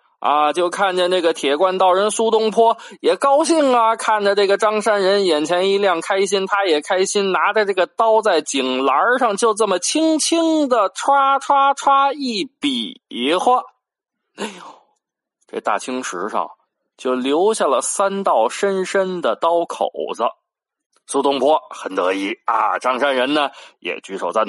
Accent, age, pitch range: native, 20-39, 165-260 Hz